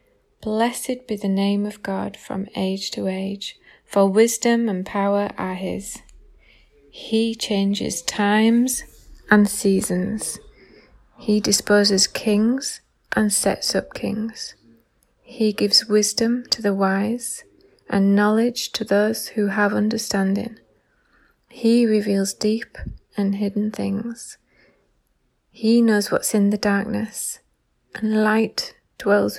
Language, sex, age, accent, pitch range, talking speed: English, female, 20-39, British, 195-225 Hz, 115 wpm